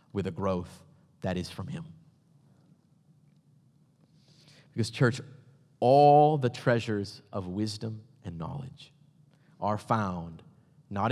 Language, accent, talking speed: English, American, 105 wpm